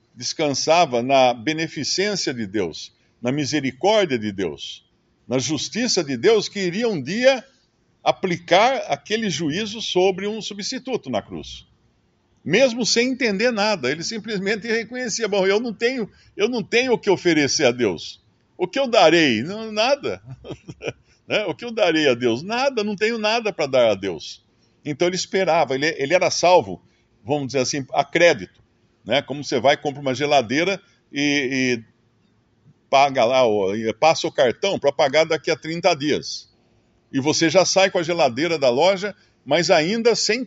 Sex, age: male, 60-79